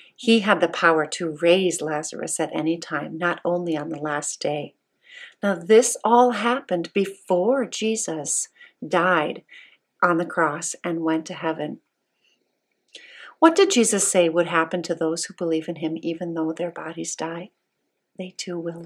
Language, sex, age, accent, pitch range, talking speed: English, female, 50-69, American, 165-245 Hz, 160 wpm